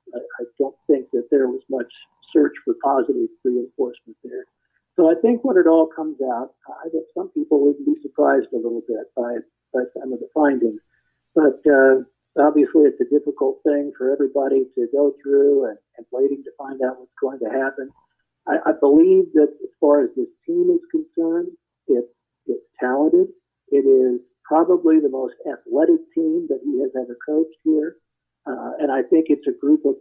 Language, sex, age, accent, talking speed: English, male, 50-69, American, 185 wpm